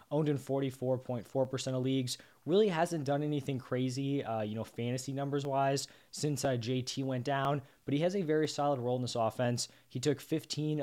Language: English